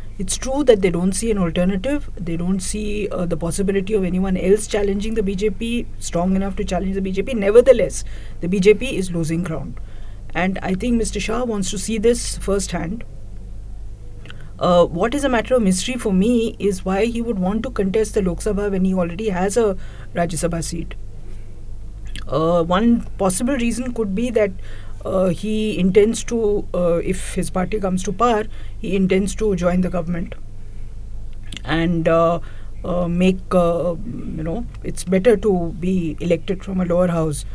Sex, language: female, English